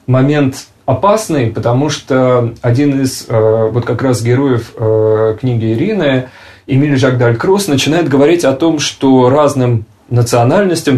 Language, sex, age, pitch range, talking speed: Russian, male, 20-39, 120-140 Hz, 115 wpm